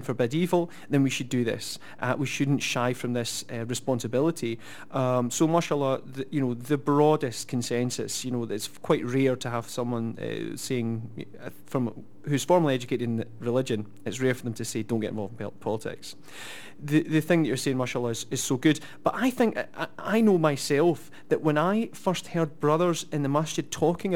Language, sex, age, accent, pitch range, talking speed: English, male, 30-49, British, 120-150 Hz, 195 wpm